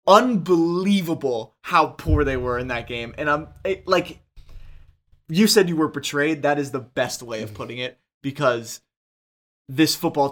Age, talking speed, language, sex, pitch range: 20-39, 165 wpm, English, male, 115-145 Hz